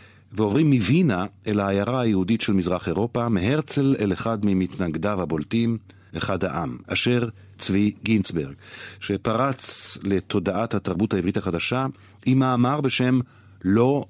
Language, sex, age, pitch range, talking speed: Hebrew, male, 50-69, 95-125 Hz, 115 wpm